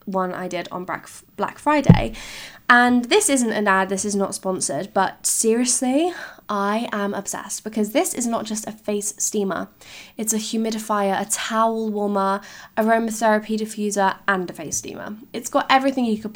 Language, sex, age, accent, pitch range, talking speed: English, female, 10-29, British, 190-230 Hz, 165 wpm